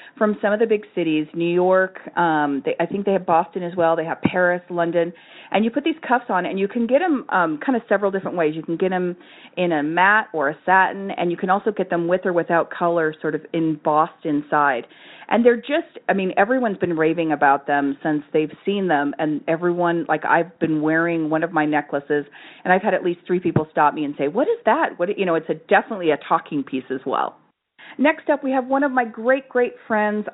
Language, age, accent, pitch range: English, 40-59, American, 165-225 Hz